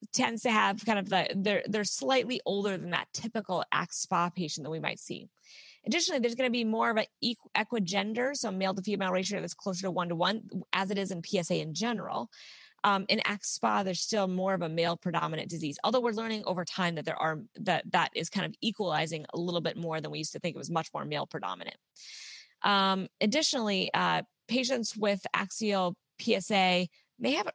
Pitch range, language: 175-220 Hz, English